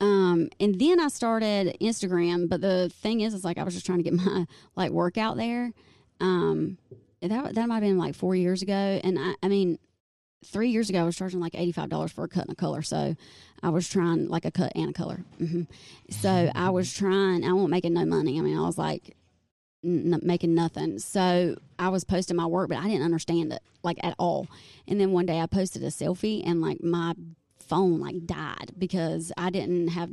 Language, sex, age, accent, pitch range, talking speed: English, female, 20-39, American, 170-195 Hz, 220 wpm